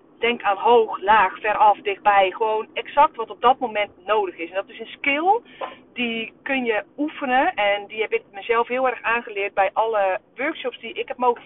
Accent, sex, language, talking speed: Dutch, female, Dutch, 200 wpm